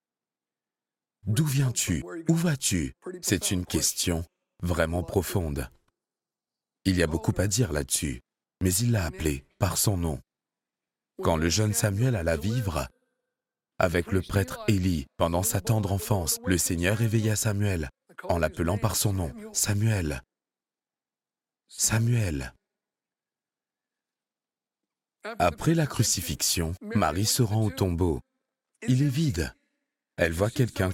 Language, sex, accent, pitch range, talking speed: French, male, French, 85-125 Hz, 125 wpm